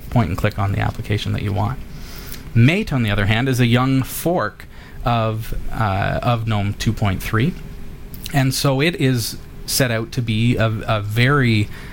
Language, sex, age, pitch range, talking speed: English, male, 30-49, 110-130 Hz, 170 wpm